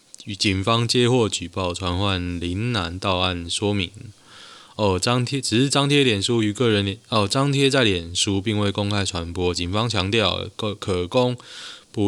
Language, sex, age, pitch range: Chinese, male, 20-39, 90-115 Hz